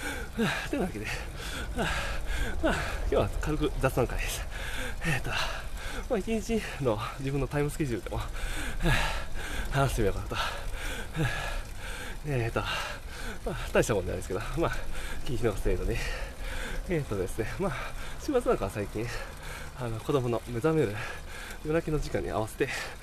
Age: 20-39